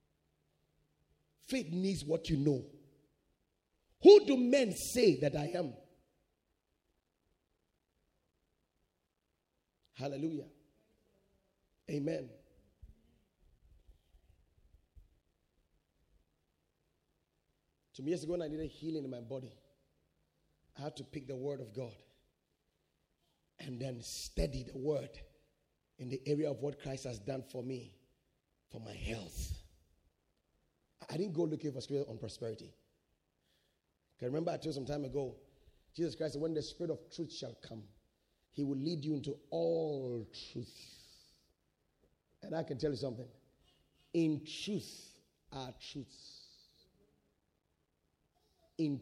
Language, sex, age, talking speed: English, male, 30-49, 115 wpm